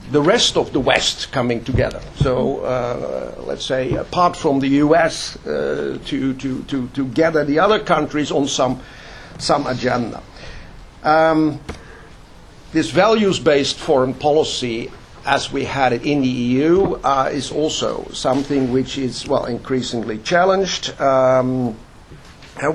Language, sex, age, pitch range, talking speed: English, male, 60-79, 130-160 Hz, 135 wpm